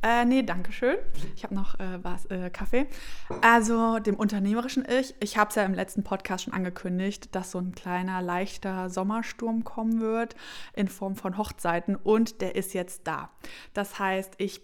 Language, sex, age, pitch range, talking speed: German, female, 20-39, 185-215 Hz, 180 wpm